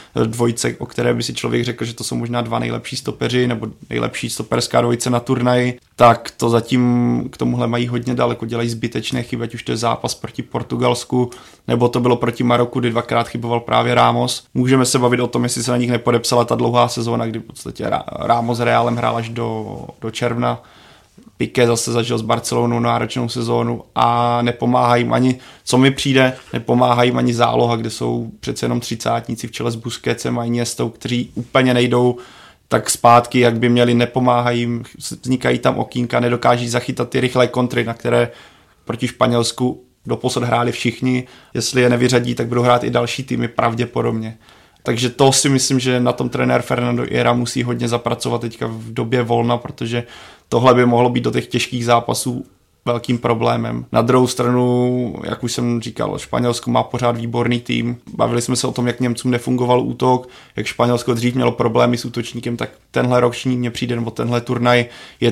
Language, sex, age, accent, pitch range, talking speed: Czech, male, 30-49, native, 115-125 Hz, 185 wpm